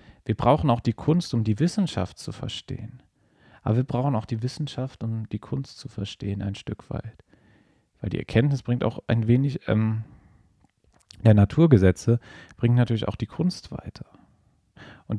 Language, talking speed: German, 160 wpm